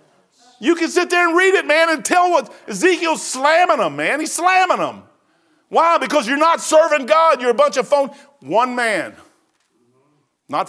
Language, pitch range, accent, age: English, 145-235 Hz, American, 50-69